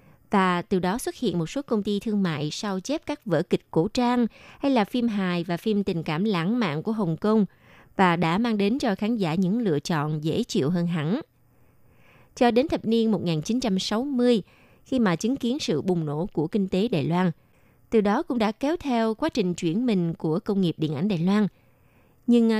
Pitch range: 170-230 Hz